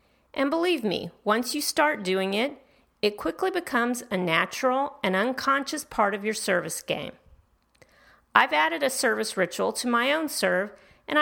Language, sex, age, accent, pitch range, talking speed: English, female, 40-59, American, 195-260 Hz, 160 wpm